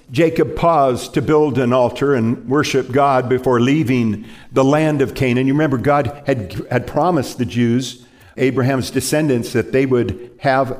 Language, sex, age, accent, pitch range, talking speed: English, male, 50-69, American, 115-150 Hz, 160 wpm